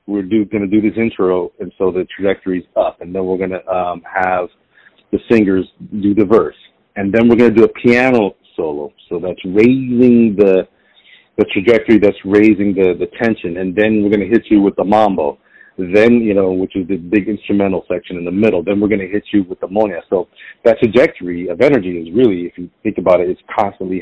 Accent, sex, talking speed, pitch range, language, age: American, male, 220 wpm, 95-110 Hz, English, 40-59